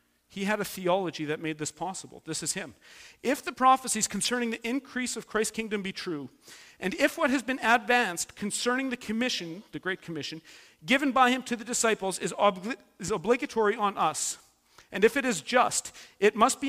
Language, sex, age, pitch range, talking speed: English, male, 40-59, 165-230 Hz, 190 wpm